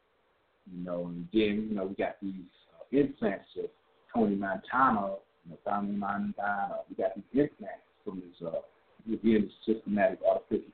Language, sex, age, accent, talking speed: English, male, 50-69, American, 155 wpm